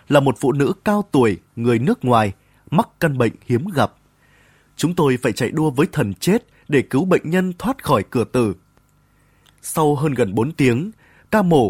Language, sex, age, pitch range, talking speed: Vietnamese, male, 20-39, 120-170 Hz, 190 wpm